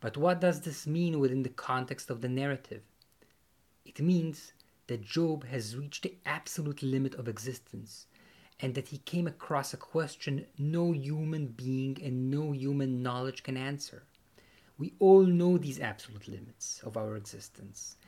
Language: German